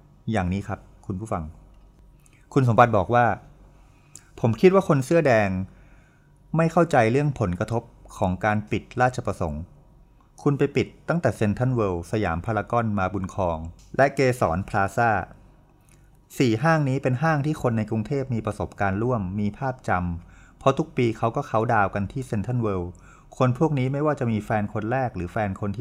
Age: 30-49